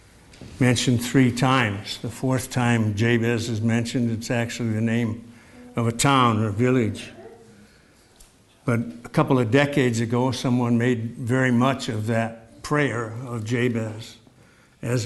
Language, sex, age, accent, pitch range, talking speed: English, male, 60-79, American, 115-130 Hz, 135 wpm